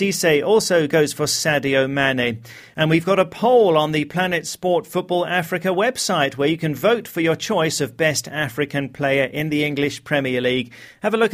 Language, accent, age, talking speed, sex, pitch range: English, British, 40-59, 195 wpm, male, 135-175 Hz